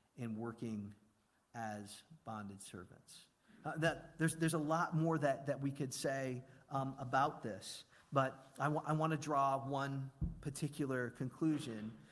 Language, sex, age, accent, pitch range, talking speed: English, male, 40-59, American, 125-160 Hz, 145 wpm